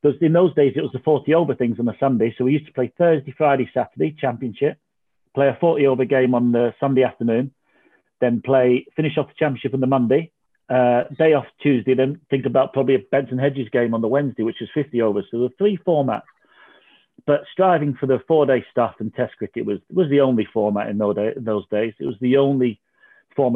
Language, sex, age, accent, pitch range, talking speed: English, male, 40-59, British, 120-145 Hz, 210 wpm